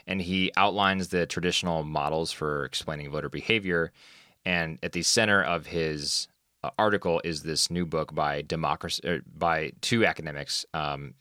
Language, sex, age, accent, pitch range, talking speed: English, male, 20-39, American, 80-90 Hz, 145 wpm